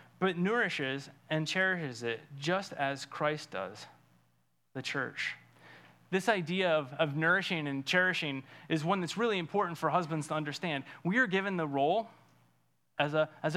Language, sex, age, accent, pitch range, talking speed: English, male, 30-49, American, 135-175 Hz, 145 wpm